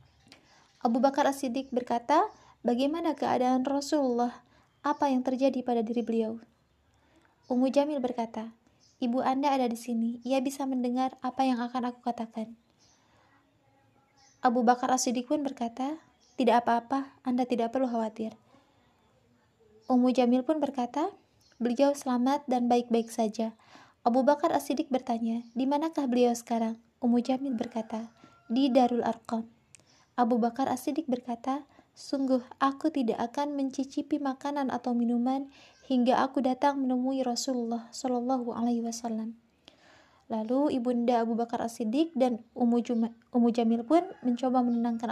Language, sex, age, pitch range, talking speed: Indonesian, female, 20-39, 235-275 Hz, 125 wpm